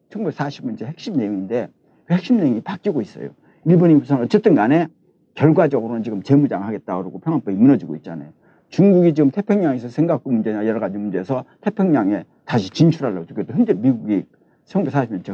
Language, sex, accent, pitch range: Korean, male, native, 125-195 Hz